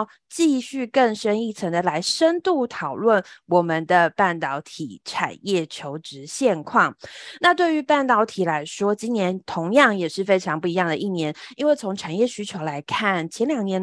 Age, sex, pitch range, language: 20-39, female, 185-255 Hz, Chinese